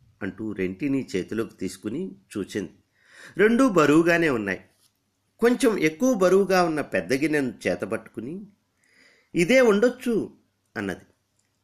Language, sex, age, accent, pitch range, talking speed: Telugu, male, 50-69, native, 95-145 Hz, 100 wpm